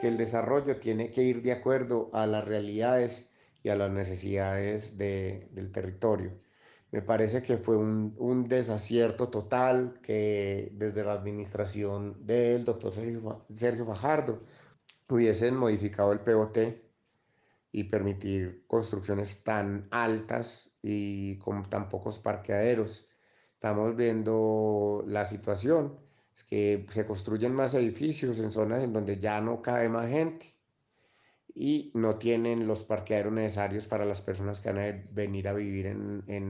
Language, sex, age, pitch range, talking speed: English, male, 30-49, 105-120 Hz, 140 wpm